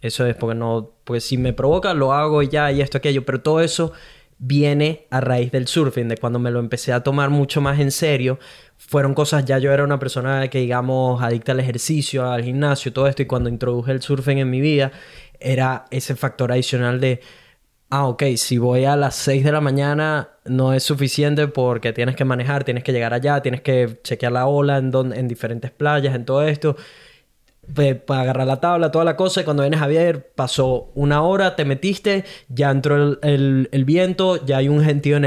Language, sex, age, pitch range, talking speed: Spanish, male, 10-29, 125-145 Hz, 215 wpm